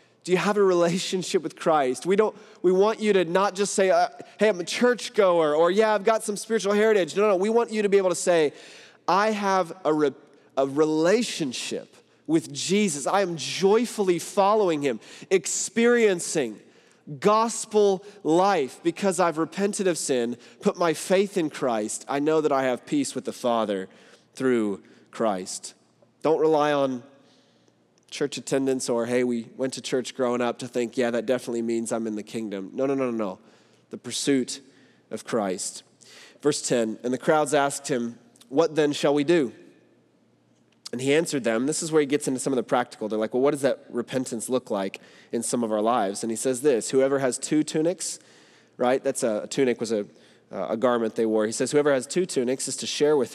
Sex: male